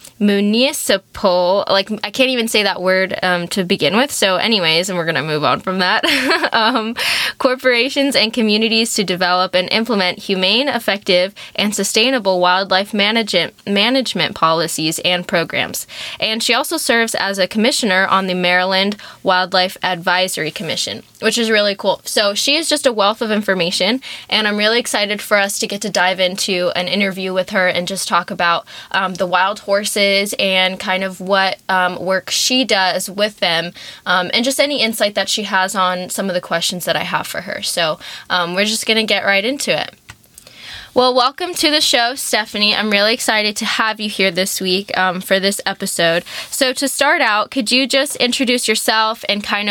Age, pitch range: 10-29, 185-225 Hz